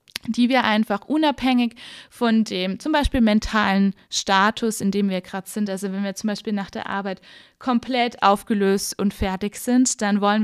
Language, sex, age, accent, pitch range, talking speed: English, female, 20-39, German, 200-245 Hz, 170 wpm